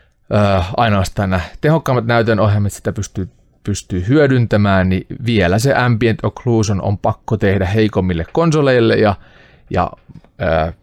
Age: 30-49